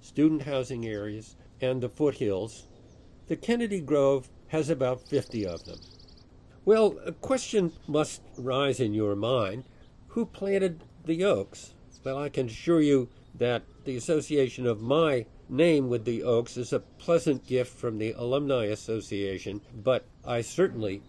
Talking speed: 145 wpm